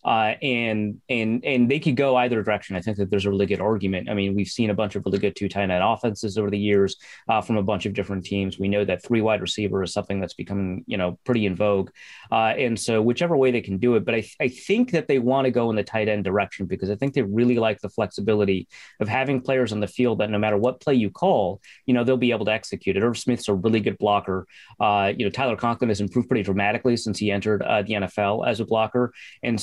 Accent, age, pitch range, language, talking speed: American, 30-49, 100-120 Hz, English, 270 wpm